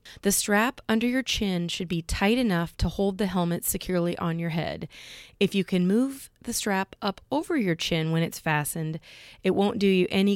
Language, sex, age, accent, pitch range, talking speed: English, female, 30-49, American, 170-210 Hz, 205 wpm